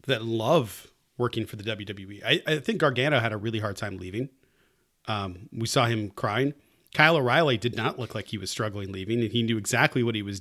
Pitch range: 110-130 Hz